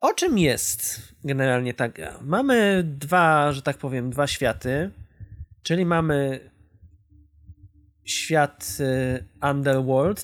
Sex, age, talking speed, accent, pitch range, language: male, 20-39, 95 wpm, native, 135-190 Hz, Polish